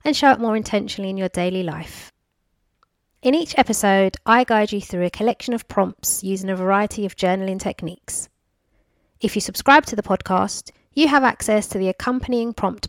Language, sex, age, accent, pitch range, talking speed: English, female, 30-49, British, 190-230 Hz, 180 wpm